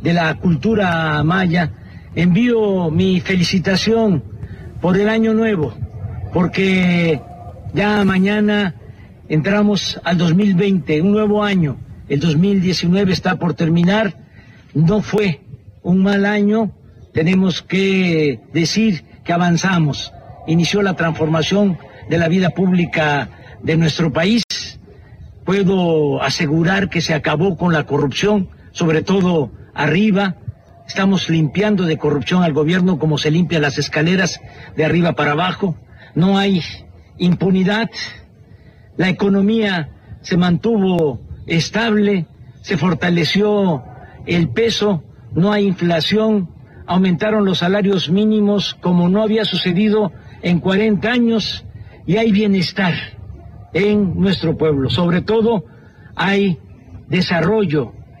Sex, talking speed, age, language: male, 110 wpm, 50-69, Spanish